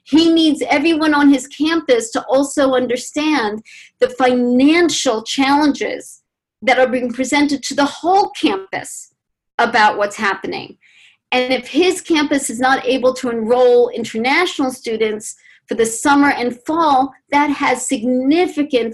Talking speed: 135 wpm